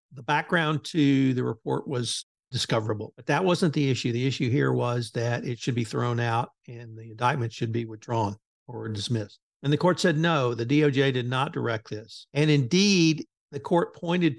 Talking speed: 190 wpm